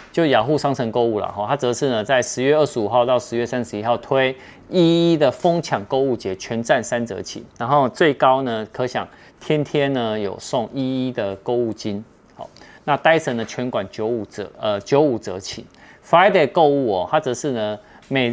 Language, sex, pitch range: Chinese, male, 110-140 Hz